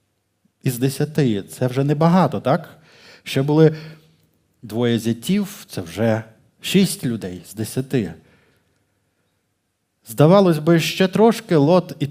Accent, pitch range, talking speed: native, 120-155 Hz, 110 wpm